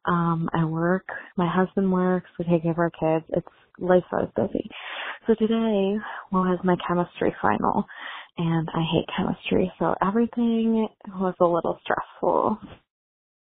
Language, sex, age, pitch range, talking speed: English, female, 20-39, 170-195 Hz, 145 wpm